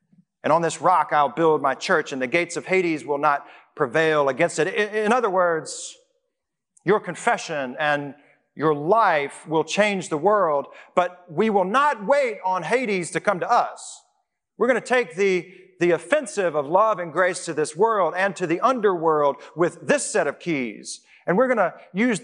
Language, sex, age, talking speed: English, male, 40-59, 185 wpm